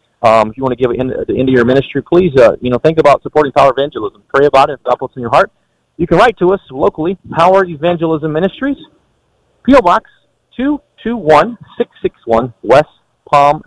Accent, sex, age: American, male, 40-59